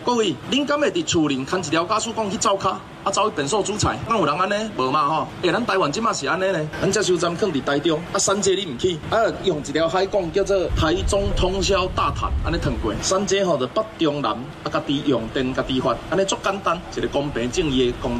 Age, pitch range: 20-39, 140-195 Hz